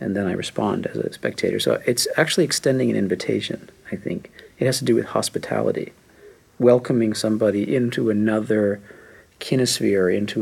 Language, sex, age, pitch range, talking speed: Danish, male, 40-59, 105-125 Hz, 155 wpm